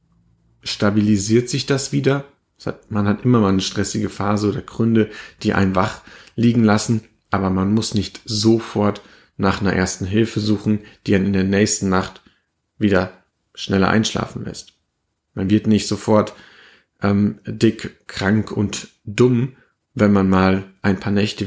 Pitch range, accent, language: 95-110 Hz, German, German